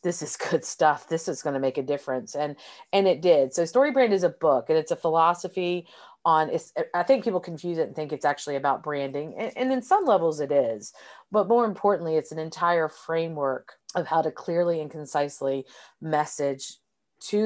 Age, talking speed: 40-59, 205 wpm